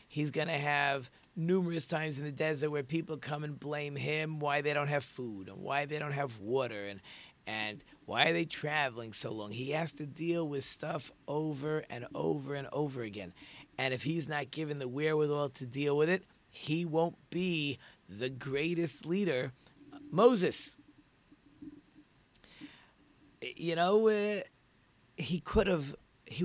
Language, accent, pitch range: English, American, 130-165 Hz